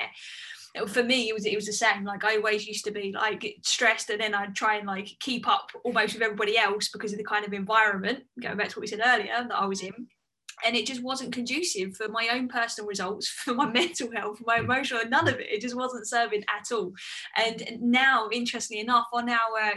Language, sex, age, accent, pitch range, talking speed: English, female, 10-29, British, 205-235 Hz, 235 wpm